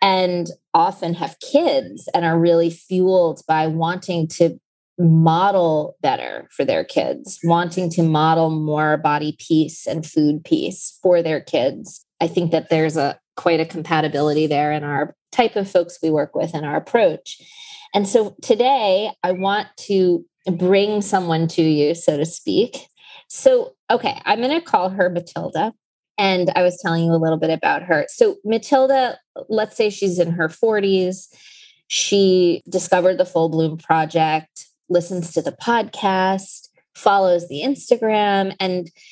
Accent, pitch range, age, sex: American, 160-200 Hz, 30-49, female